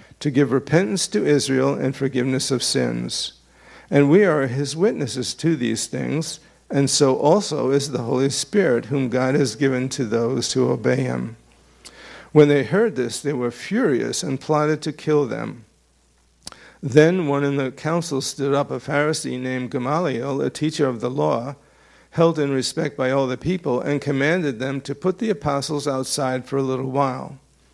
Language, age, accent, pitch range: English, 50-69, American, 130-155 Hz